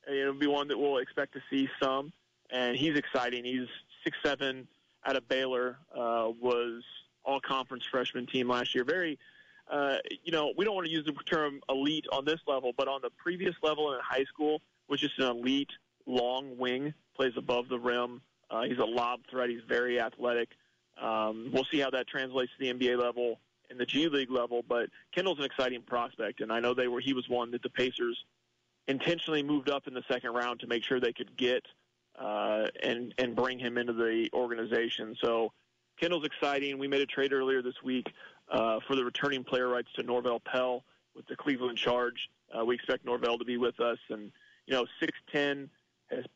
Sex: male